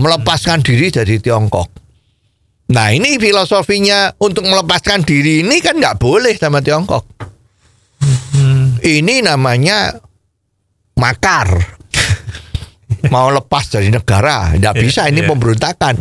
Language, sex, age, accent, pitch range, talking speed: Indonesian, male, 50-69, native, 95-125 Hz, 100 wpm